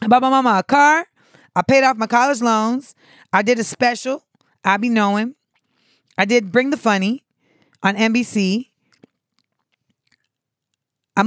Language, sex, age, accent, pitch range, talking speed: English, female, 20-39, American, 195-265 Hz, 145 wpm